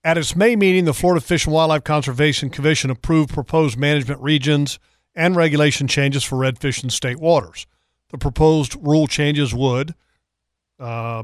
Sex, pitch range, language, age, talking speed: male, 135-165 Hz, English, 50-69, 155 wpm